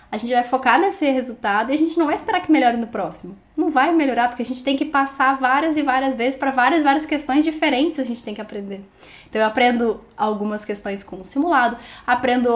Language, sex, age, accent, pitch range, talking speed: Portuguese, female, 10-29, Brazilian, 225-300 Hz, 235 wpm